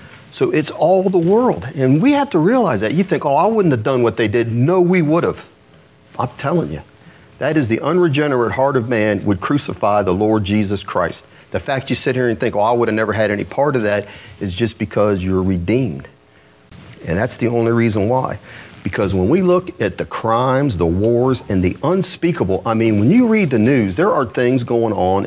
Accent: American